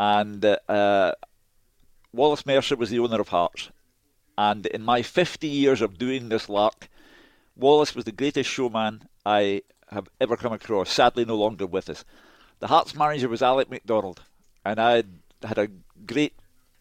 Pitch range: 105-130 Hz